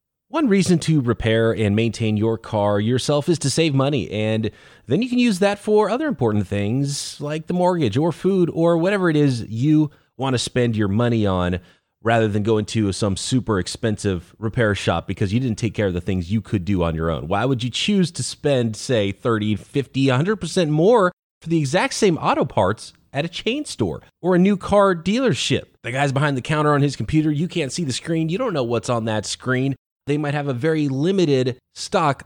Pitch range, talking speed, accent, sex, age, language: 105-165 Hz, 215 wpm, American, male, 30-49, English